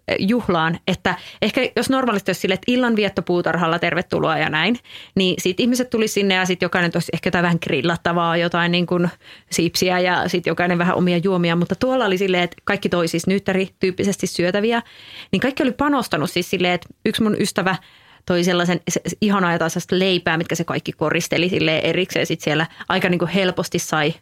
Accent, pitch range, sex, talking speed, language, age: native, 170-195 Hz, female, 190 wpm, Finnish, 30-49